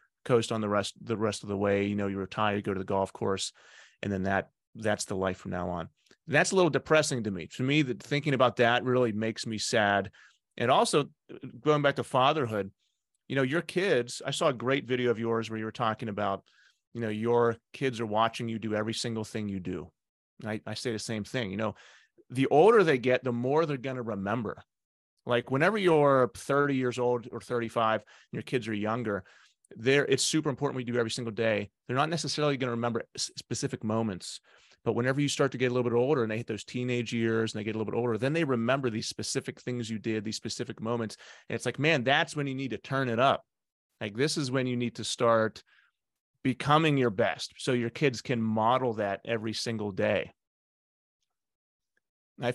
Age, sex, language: 30-49, male, English